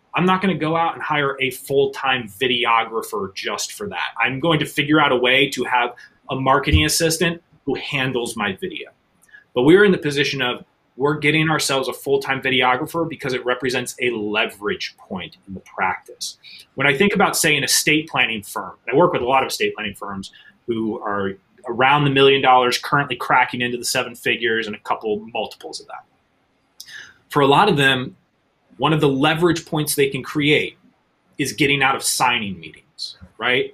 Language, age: English, 30-49